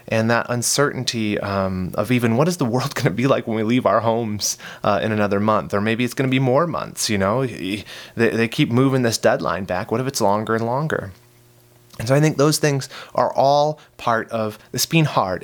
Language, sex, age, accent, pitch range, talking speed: English, male, 30-49, American, 105-135 Hz, 230 wpm